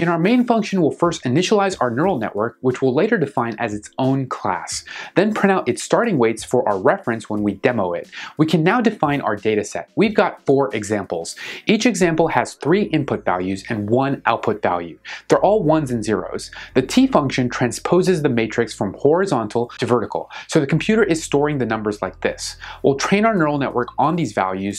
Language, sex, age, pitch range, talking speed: English, male, 30-49, 110-160 Hz, 205 wpm